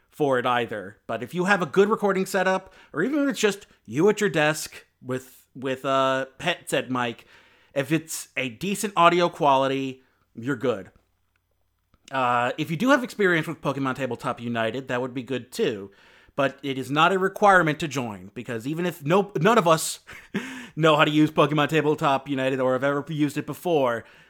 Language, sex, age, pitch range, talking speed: English, male, 30-49, 125-170 Hz, 190 wpm